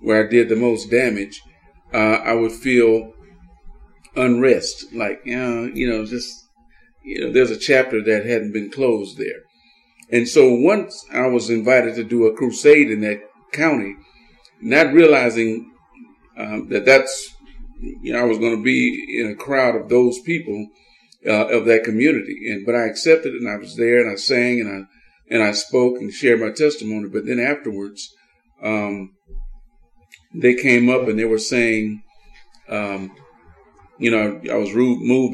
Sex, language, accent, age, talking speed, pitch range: male, English, American, 50-69, 165 wpm, 110-125 Hz